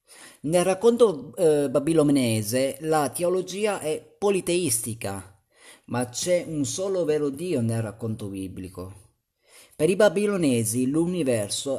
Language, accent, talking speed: Italian, native, 105 wpm